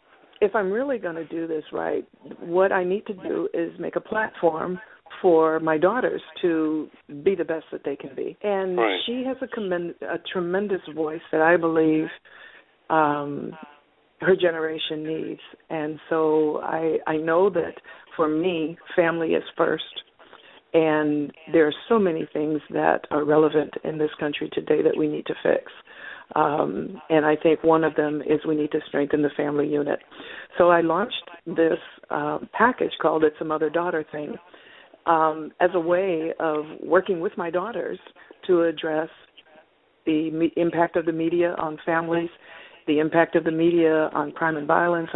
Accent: American